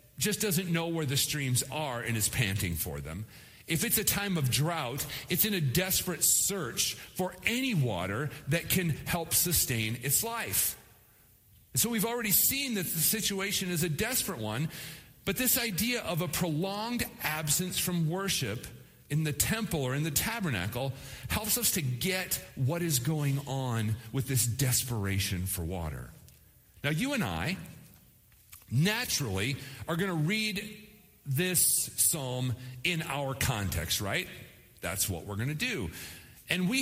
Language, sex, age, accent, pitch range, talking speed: English, male, 40-59, American, 120-185 Hz, 155 wpm